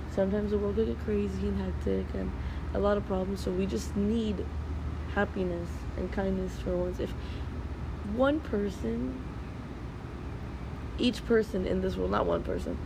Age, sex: 20-39, female